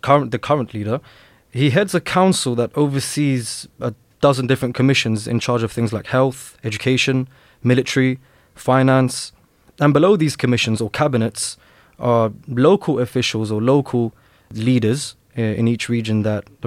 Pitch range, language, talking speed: 115-135 Hz, English, 135 wpm